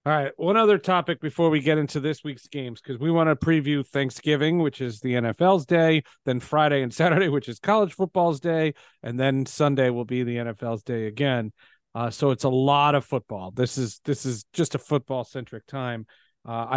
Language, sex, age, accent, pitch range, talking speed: English, male, 40-59, American, 120-150 Hz, 205 wpm